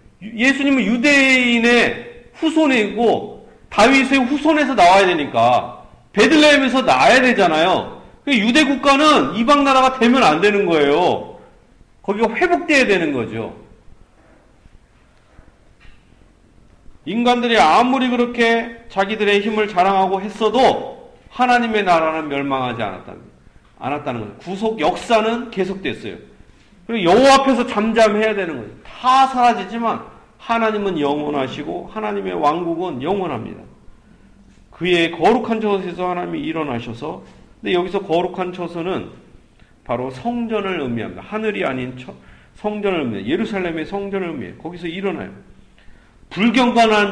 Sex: male